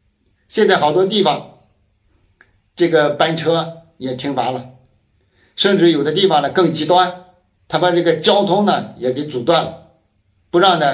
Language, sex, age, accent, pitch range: Chinese, male, 60-79, native, 110-185 Hz